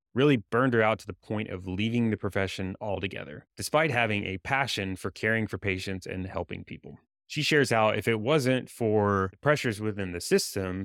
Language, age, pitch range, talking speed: English, 20-39, 95-115 Hz, 190 wpm